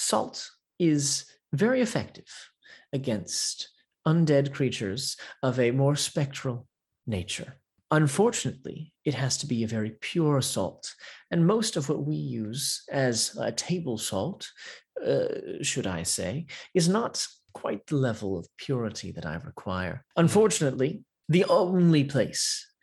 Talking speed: 130 wpm